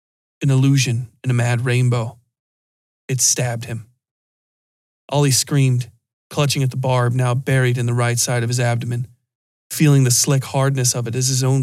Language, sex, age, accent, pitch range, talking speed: English, male, 40-59, American, 120-130 Hz, 170 wpm